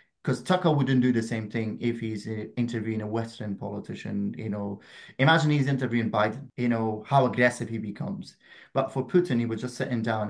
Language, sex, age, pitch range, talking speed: English, male, 30-49, 110-125 Hz, 200 wpm